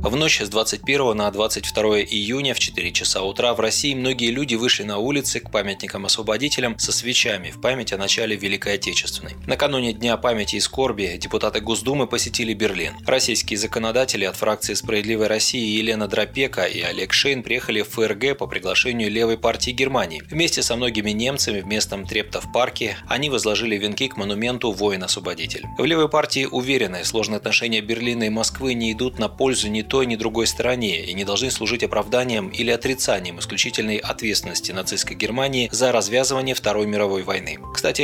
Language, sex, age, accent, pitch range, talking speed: Russian, male, 20-39, native, 105-125 Hz, 165 wpm